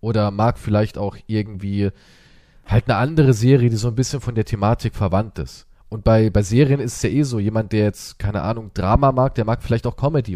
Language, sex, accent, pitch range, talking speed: German, male, German, 105-135 Hz, 225 wpm